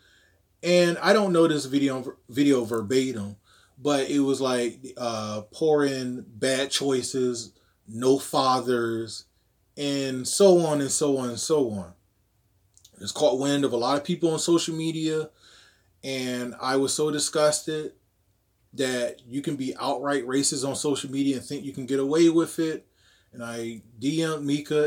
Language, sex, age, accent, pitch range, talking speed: English, male, 20-39, American, 110-145 Hz, 155 wpm